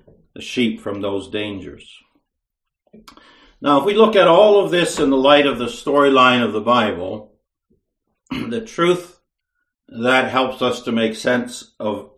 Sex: male